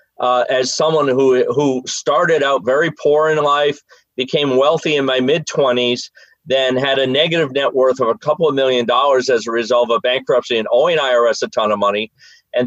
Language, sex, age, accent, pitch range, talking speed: English, male, 40-59, American, 140-190 Hz, 195 wpm